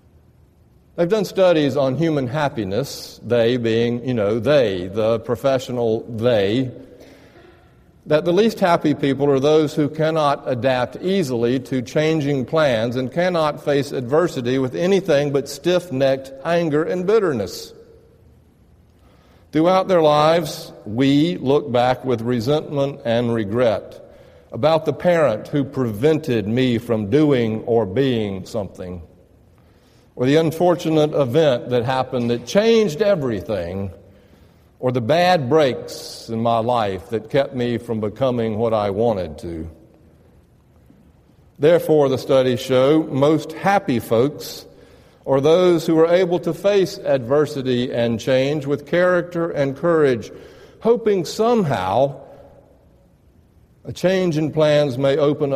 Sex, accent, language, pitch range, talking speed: male, American, English, 120-160 Hz, 125 wpm